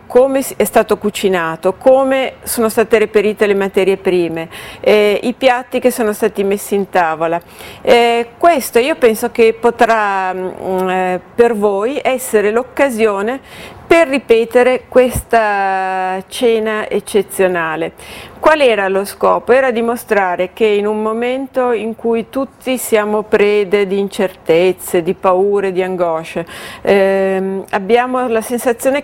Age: 50-69